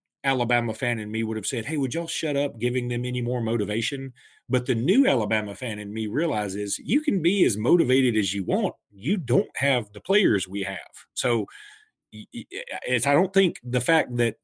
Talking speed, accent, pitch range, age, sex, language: 195 wpm, American, 110-160 Hz, 40-59, male, English